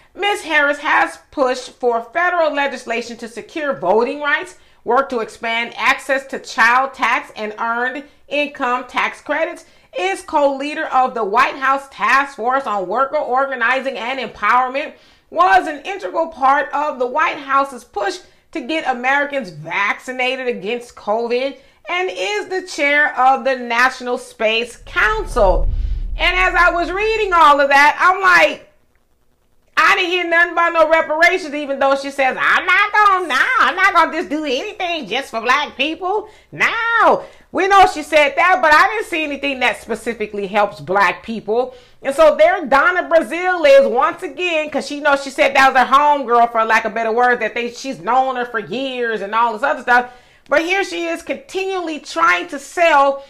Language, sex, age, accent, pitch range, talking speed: English, female, 40-59, American, 250-330 Hz, 175 wpm